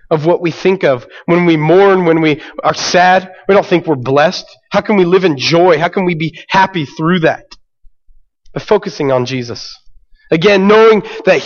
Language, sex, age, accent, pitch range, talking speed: English, male, 30-49, American, 170-225 Hz, 195 wpm